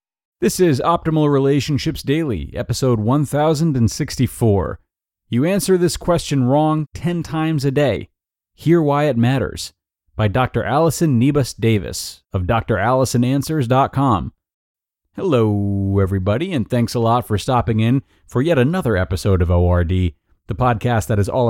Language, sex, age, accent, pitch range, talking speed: English, male, 30-49, American, 105-145 Hz, 130 wpm